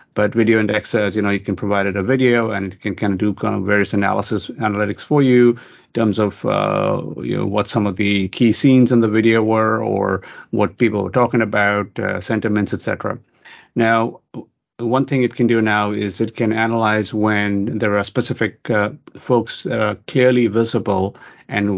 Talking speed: 200 wpm